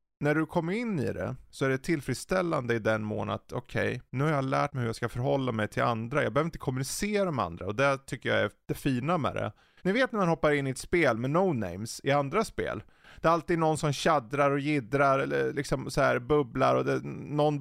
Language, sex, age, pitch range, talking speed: Swedish, male, 30-49, 120-155 Hz, 250 wpm